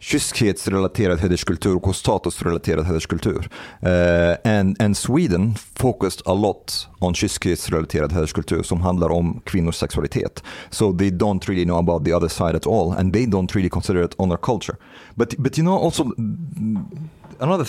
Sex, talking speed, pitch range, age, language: male, 155 wpm, 95-130 Hz, 40-59, Swedish